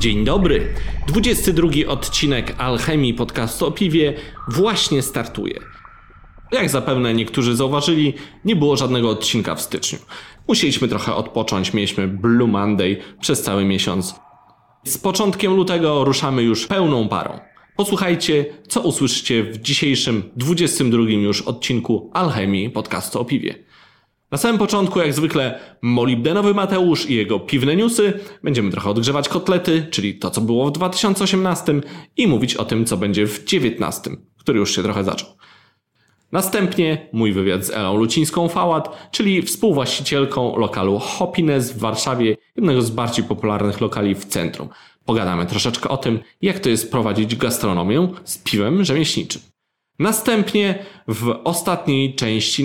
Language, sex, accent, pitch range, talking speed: Polish, male, native, 110-170 Hz, 135 wpm